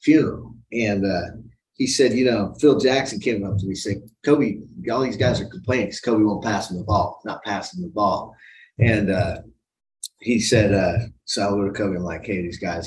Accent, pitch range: American, 100-120 Hz